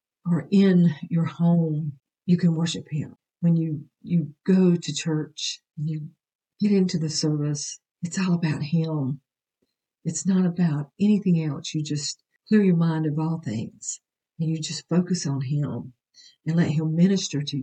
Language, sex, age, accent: English, female, 50-69, American